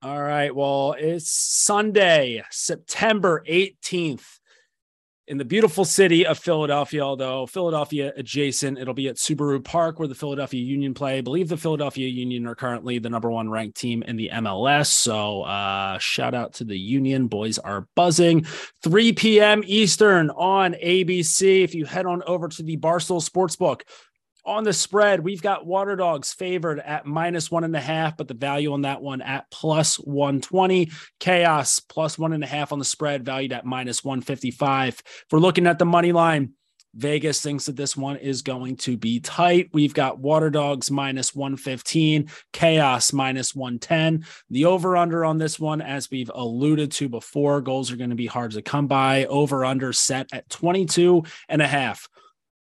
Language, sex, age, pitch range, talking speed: English, male, 30-49, 130-170 Hz, 175 wpm